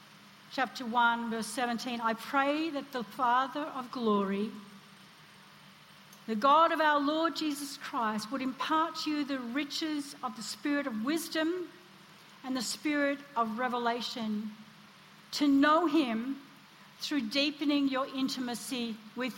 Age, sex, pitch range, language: 60-79, female, 220-300 Hz, English